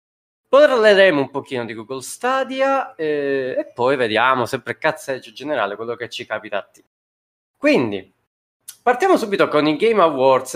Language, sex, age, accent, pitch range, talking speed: Italian, male, 20-39, native, 115-185 Hz, 150 wpm